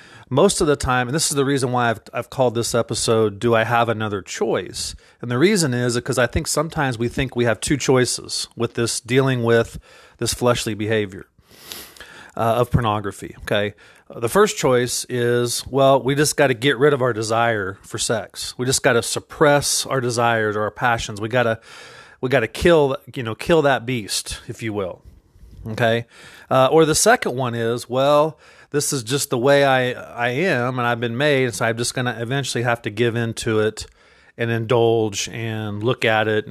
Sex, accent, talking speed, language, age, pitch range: male, American, 200 wpm, English, 40-59, 115-140 Hz